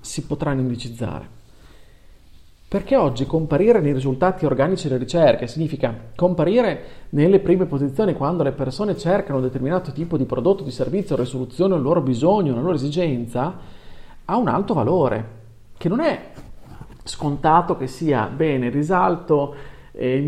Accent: native